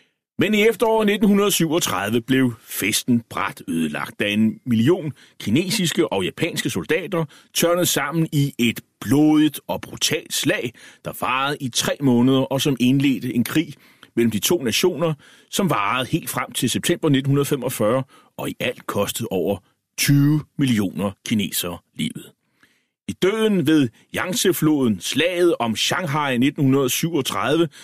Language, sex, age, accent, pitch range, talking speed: Danish, male, 30-49, native, 120-160 Hz, 130 wpm